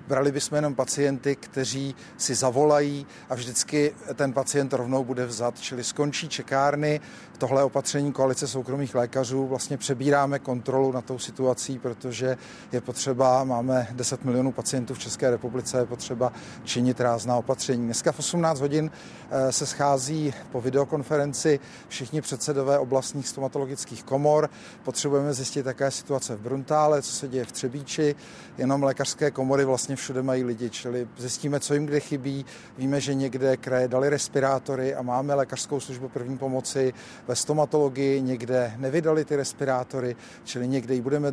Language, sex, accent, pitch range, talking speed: Czech, male, native, 130-145 Hz, 150 wpm